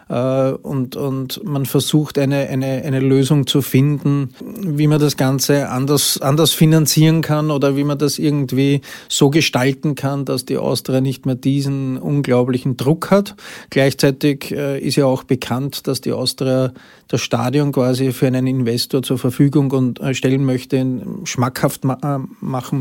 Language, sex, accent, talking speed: German, male, Austrian, 145 wpm